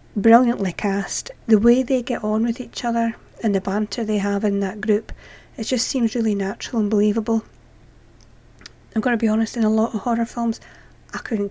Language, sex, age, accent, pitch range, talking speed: English, female, 40-59, British, 205-235 Hz, 205 wpm